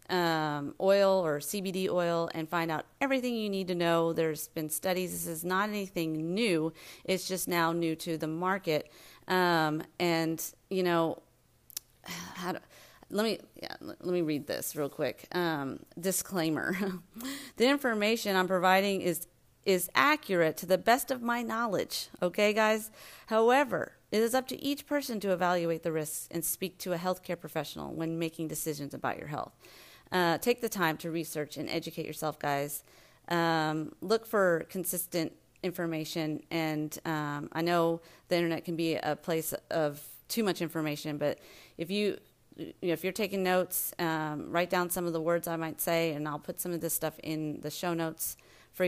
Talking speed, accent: 175 wpm, American